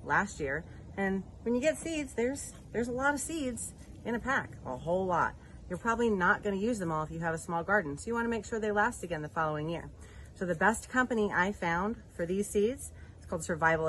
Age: 30-49